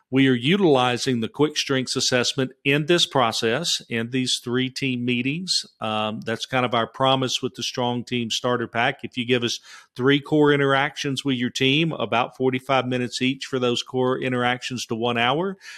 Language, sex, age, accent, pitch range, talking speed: English, male, 40-59, American, 115-140 Hz, 185 wpm